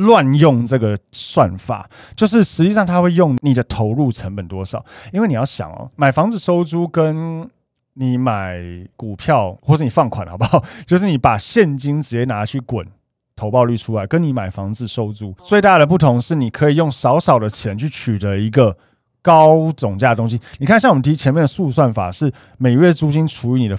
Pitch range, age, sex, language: 110-160 Hz, 20-39, male, Chinese